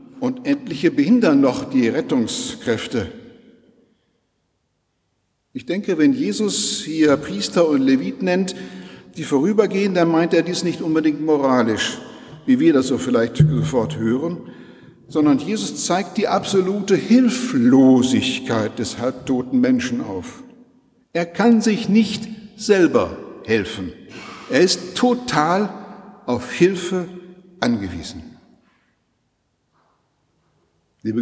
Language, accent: German, German